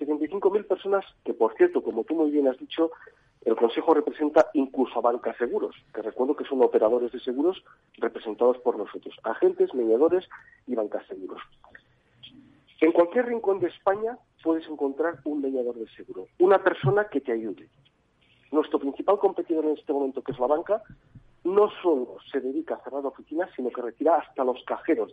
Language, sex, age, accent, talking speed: Spanish, male, 40-59, Spanish, 170 wpm